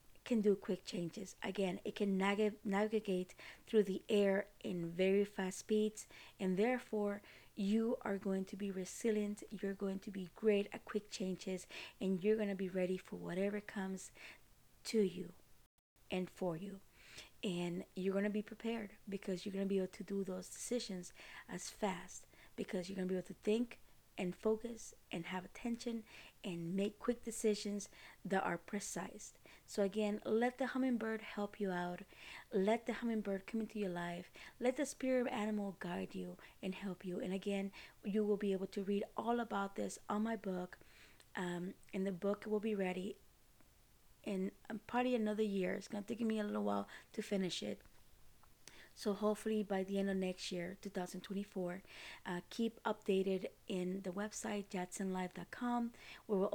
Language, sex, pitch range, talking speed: English, female, 185-215 Hz, 165 wpm